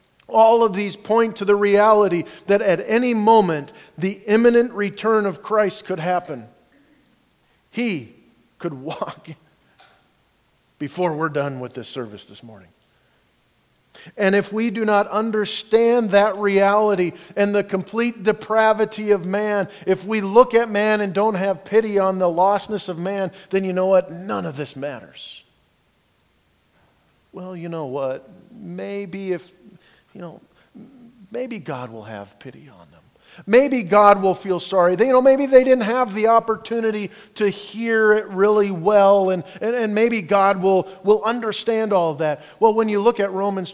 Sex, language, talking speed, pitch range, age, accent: male, English, 160 wpm, 160-215 Hz, 50-69, American